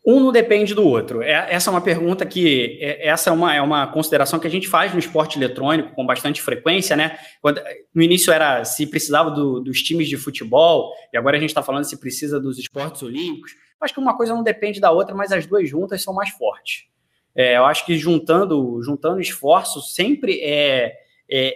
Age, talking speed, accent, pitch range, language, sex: 20-39, 205 wpm, Brazilian, 140-205 Hz, Portuguese, male